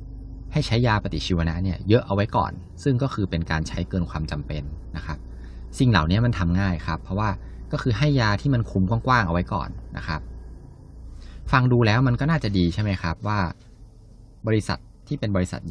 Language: Thai